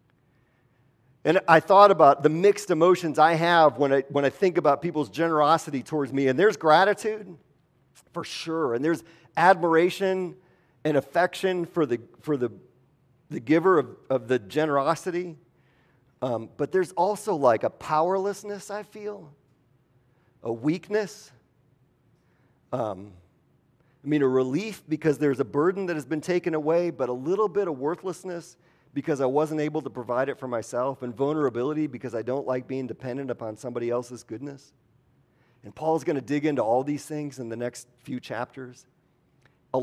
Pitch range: 125-160 Hz